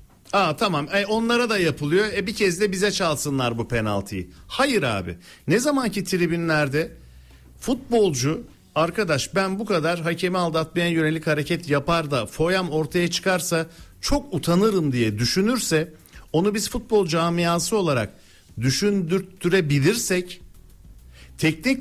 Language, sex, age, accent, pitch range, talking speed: Turkish, male, 60-79, native, 135-185 Hz, 120 wpm